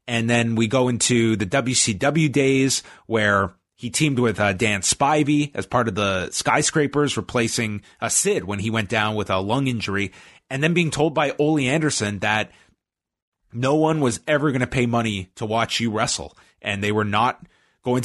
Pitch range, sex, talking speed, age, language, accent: 110-140 Hz, male, 185 wpm, 30-49, English, American